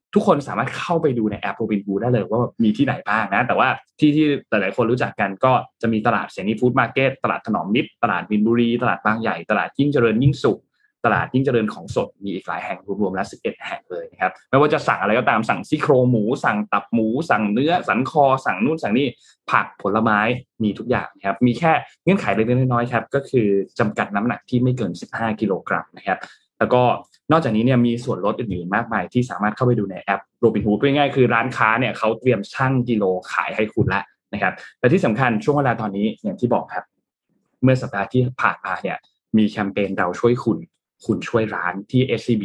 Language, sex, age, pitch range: Thai, male, 20-39, 105-130 Hz